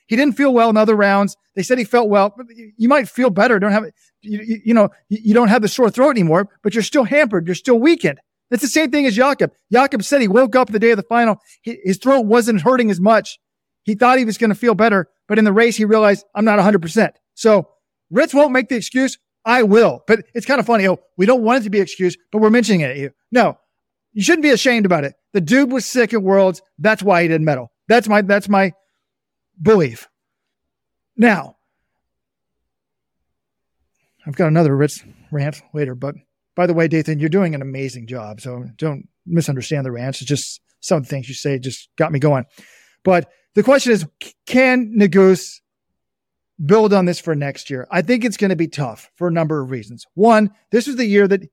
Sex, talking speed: male, 220 wpm